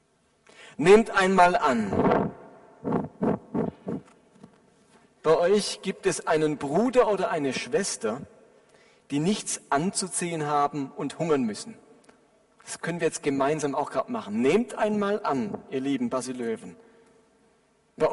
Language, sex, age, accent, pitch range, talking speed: German, male, 40-59, German, 165-225 Hz, 115 wpm